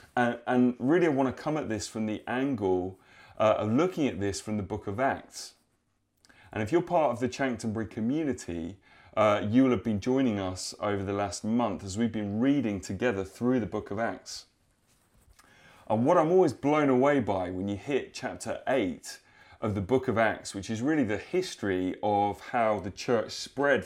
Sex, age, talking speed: male, 30-49, 190 wpm